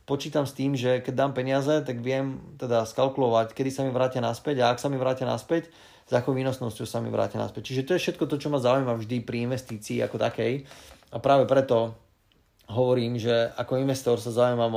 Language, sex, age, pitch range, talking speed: Slovak, male, 30-49, 115-135 Hz, 205 wpm